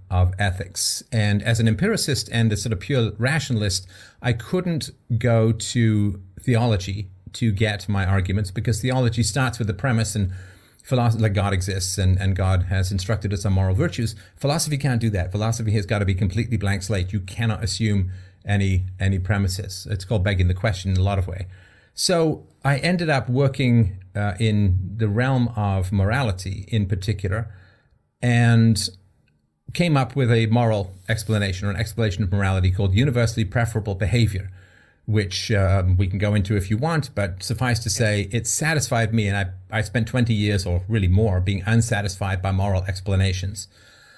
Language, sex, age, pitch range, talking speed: English, male, 40-59, 100-115 Hz, 175 wpm